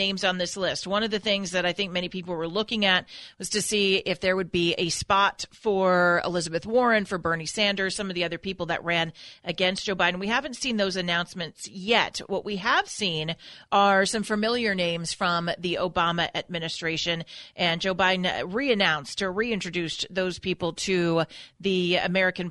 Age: 40-59